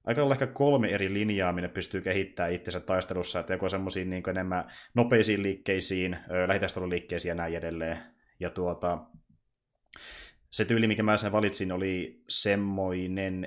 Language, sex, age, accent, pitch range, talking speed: Finnish, male, 20-39, native, 90-100 Hz, 140 wpm